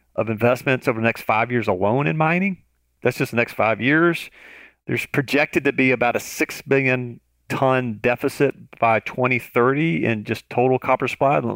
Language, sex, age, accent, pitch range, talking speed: English, male, 40-59, American, 115-140 Hz, 170 wpm